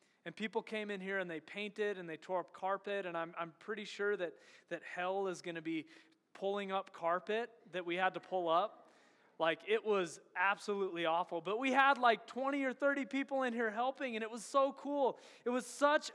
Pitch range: 170-220 Hz